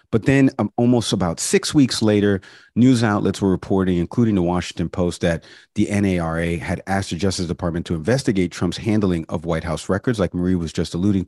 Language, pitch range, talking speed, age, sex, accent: English, 90-110 Hz, 195 wpm, 40-59, male, American